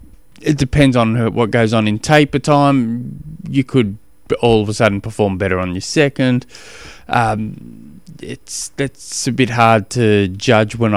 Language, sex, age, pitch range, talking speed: English, male, 20-39, 100-125 Hz, 160 wpm